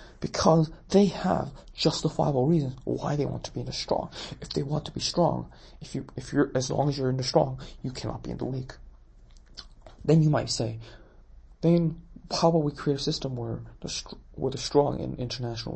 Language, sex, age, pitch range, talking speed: English, male, 20-39, 115-150 Hz, 215 wpm